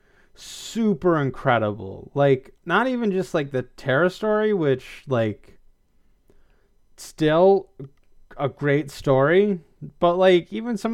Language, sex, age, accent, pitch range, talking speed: English, male, 30-49, American, 115-160 Hz, 110 wpm